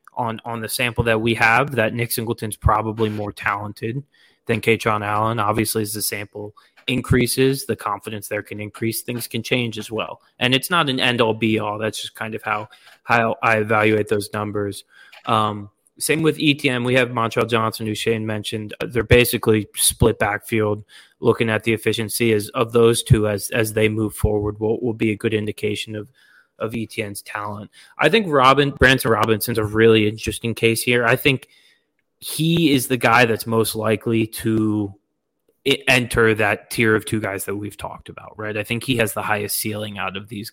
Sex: male